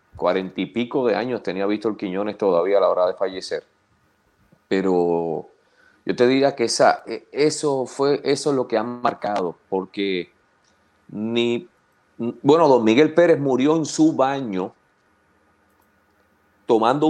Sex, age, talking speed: male, 40-59, 135 wpm